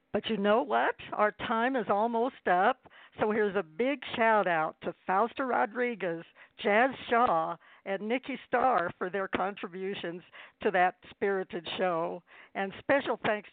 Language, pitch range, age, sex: English, 180-230 Hz, 60-79, female